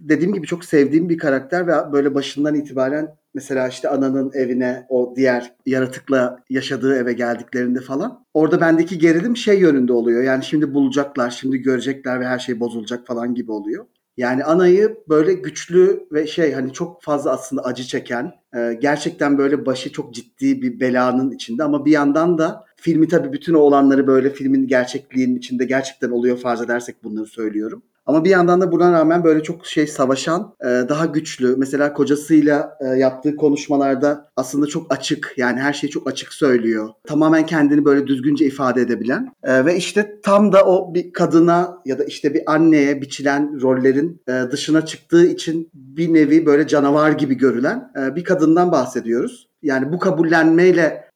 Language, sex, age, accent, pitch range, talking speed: Turkish, male, 40-59, native, 130-165 Hz, 160 wpm